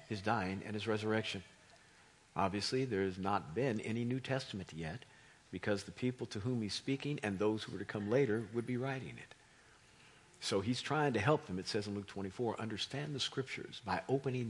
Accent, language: American, English